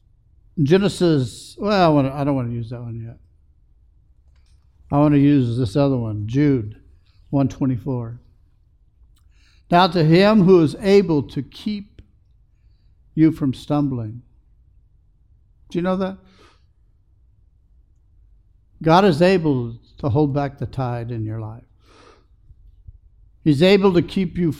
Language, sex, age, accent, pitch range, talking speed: English, male, 60-79, American, 100-150 Hz, 120 wpm